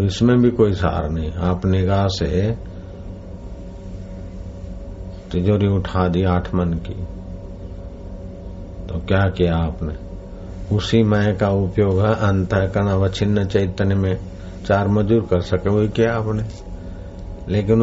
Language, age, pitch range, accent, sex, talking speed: Hindi, 60-79, 95-100 Hz, native, male, 115 wpm